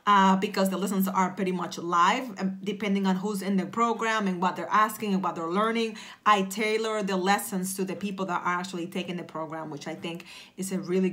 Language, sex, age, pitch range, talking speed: English, female, 30-49, 185-235 Hz, 220 wpm